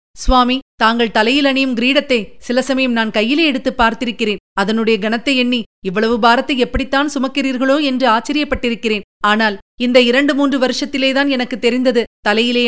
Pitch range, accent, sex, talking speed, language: 210-250 Hz, native, female, 130 wpm, Tamil